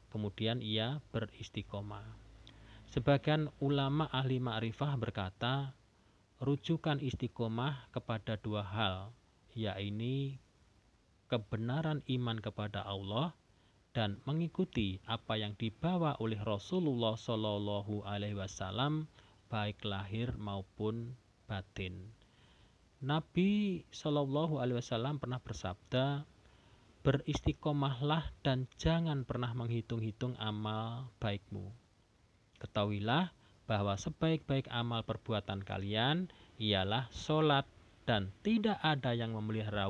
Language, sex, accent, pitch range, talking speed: Indonesian, male, native, 105-135 Hz, 80 wpm